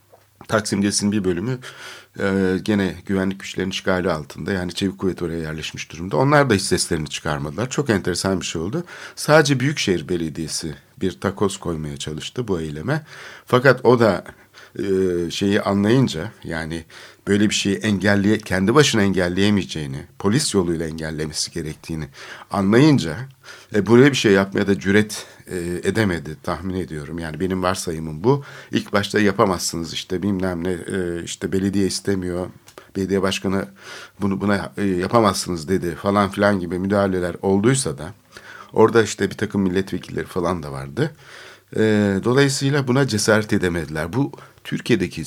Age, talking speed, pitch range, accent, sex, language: 60-79, 135 wpm, 90-110 Hz, native, male, Turkish